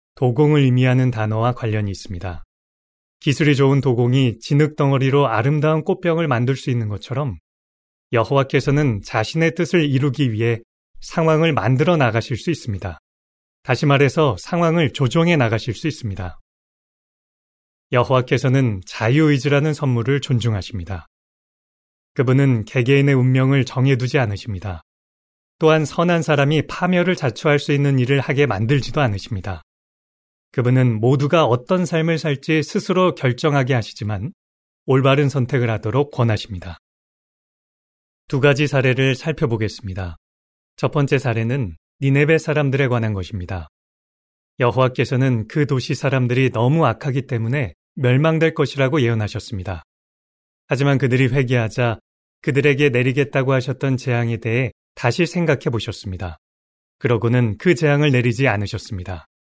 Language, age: Korean, 30-49